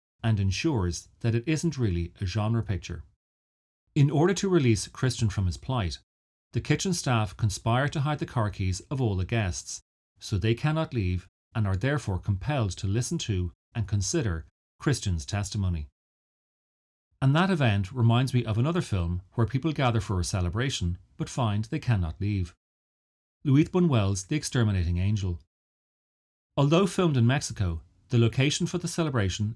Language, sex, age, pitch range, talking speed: English, male, 30-49, 90-130 Hz, 160 wpm